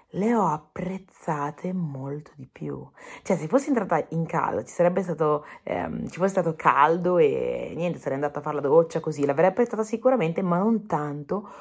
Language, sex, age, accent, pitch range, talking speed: Italian, female, 30-49, native, 145-200 Hz, 180 wpm